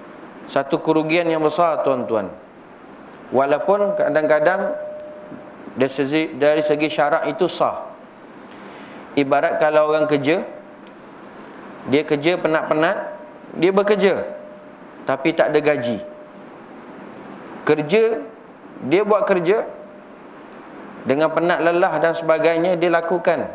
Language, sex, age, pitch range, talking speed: Malay, male, 30-49, 150-180 Hz, 95 wpm